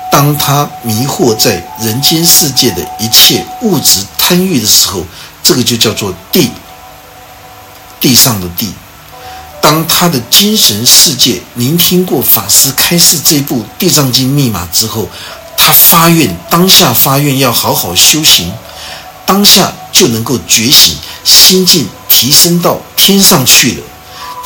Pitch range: 110-180 Hz